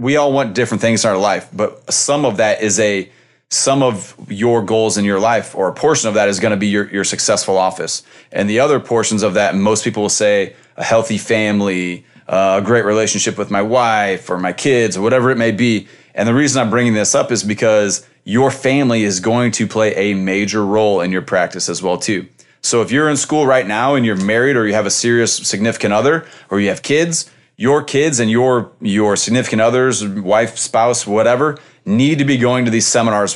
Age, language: 30-49, English